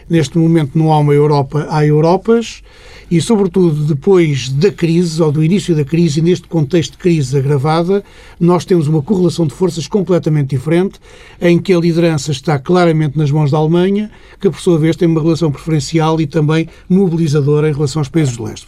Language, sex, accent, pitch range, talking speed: Portuguese, male, Portuguese, 150-180 Hz, 185 wpm